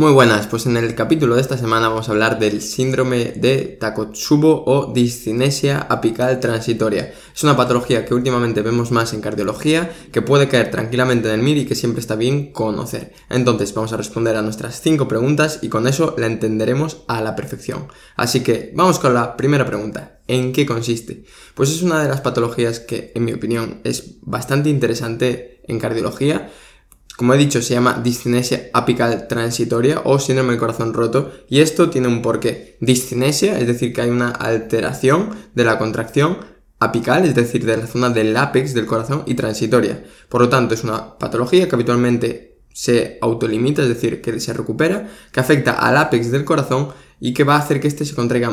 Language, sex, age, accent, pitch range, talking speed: Spanish, male, 20-39, Spanish, 115-135 Hz, 190 wpm